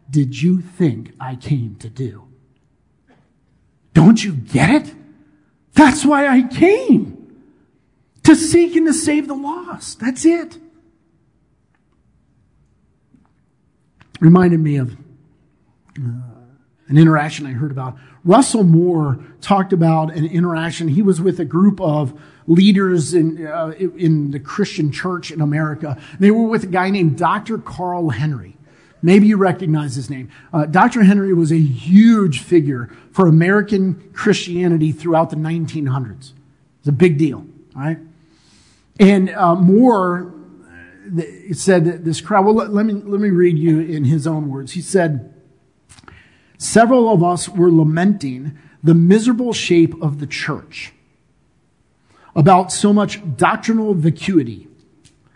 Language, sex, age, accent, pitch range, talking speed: English, male, 50-69, American, 150-195 Hz, 130 wpm